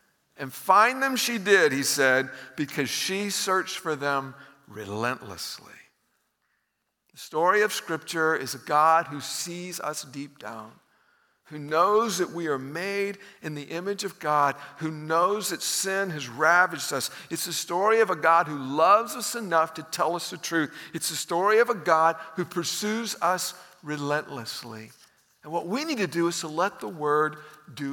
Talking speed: 170 wpm